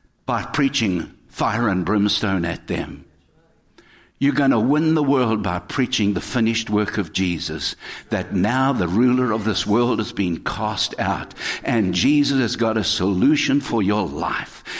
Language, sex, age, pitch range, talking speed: English, male, 60-79, 105-140 Hz, 160 wpm